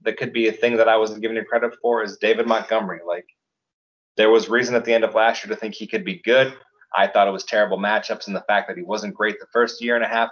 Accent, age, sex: American, 30-49, male